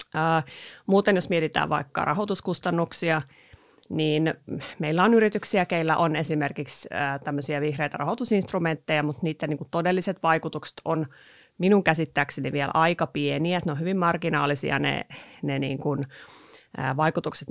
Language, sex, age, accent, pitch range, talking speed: Finnish, female, 30-49, native, 150-180 Hz, 125 wpm